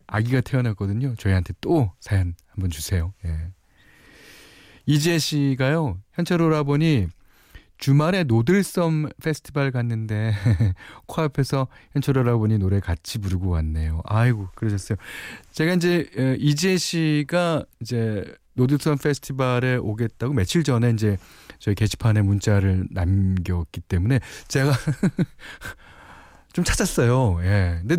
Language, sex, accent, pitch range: Korean, male, native, 95-145 Hz